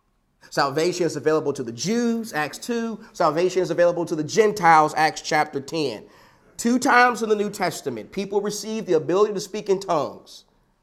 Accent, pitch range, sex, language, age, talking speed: American, 155-215 Hz, male, English, 40-59, 170 wpm